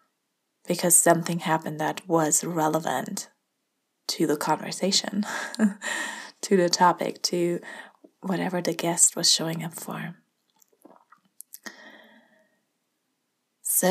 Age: 20-39